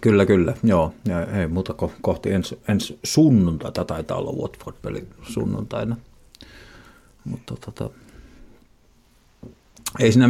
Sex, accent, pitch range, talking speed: male, native, 90-110 Hz, 110 wpm